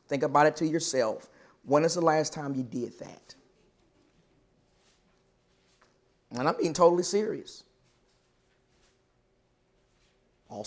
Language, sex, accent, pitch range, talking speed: English, male, American, 140-190 Hz, 105 wpm